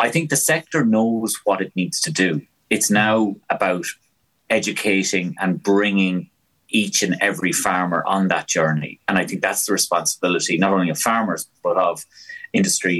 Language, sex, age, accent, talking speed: English, male, 30-49, Irish, 165 wpm